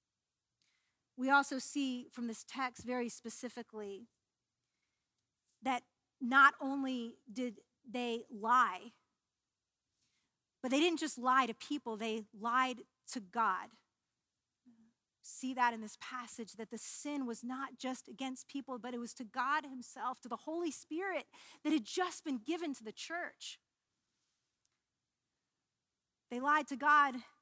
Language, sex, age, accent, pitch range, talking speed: English, female, 40-59, American, 245-295 Hz, 130 wpm